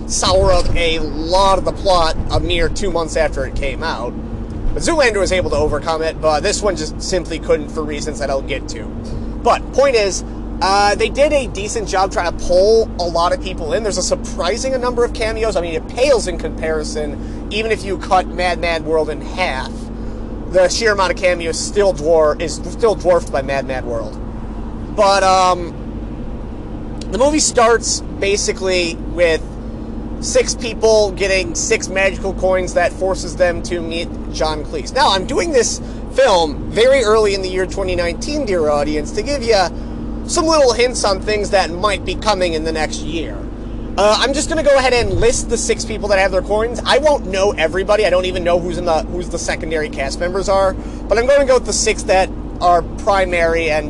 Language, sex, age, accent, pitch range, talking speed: English, male, 30-49, American, 160-215 Hz, 200 wpm